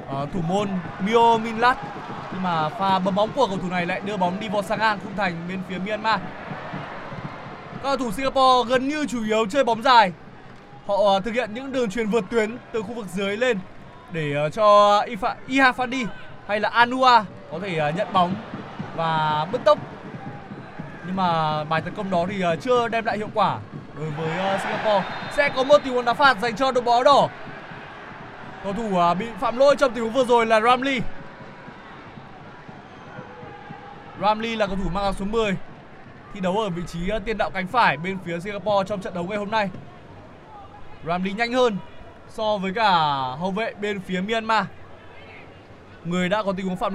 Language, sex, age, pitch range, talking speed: Vietnamese, male, 20-39, 180-230 Hz, 195 wpm